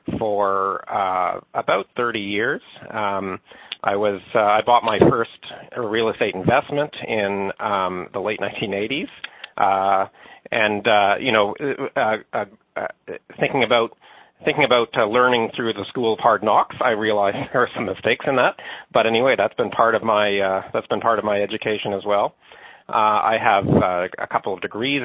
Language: English